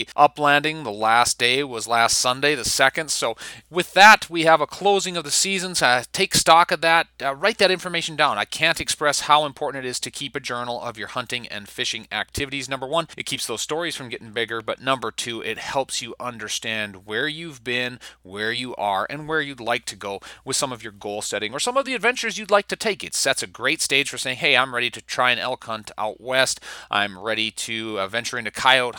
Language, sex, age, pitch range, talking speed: English, male, 30-49, 110-160 Hz, 230 wpm